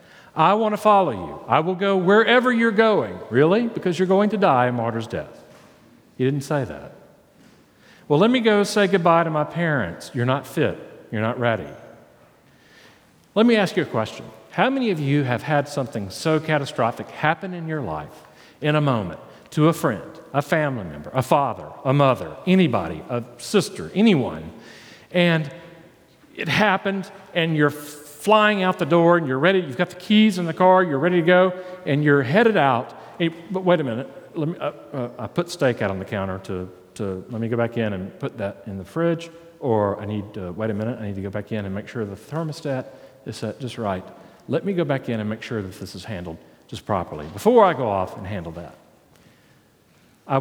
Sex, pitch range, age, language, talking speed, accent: male, 110-175 Hz, 50-69, English, 210 wpm, American